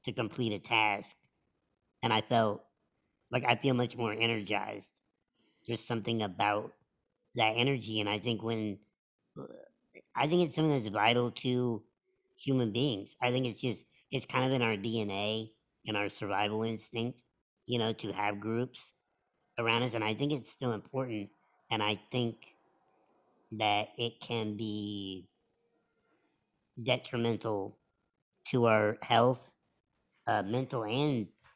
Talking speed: 135 wpm